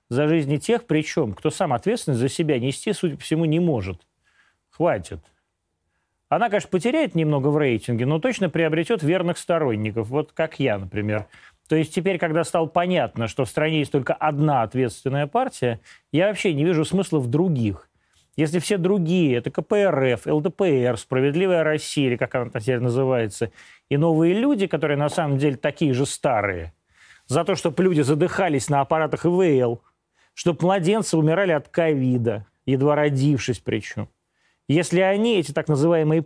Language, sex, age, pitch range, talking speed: Russian, male, 30-49, 130-170 Hz, 160 wpm